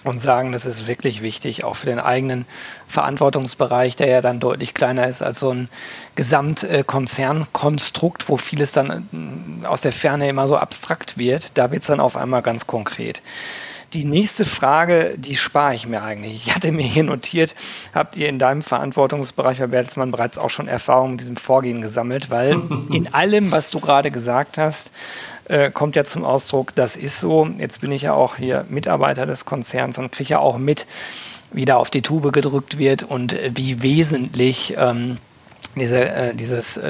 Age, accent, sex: 40-59, German, male